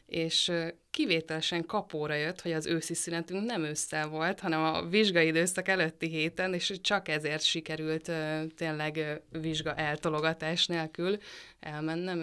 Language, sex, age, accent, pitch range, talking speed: English, female, 20-39, Finnish, 155-180 Hz, 135 wpm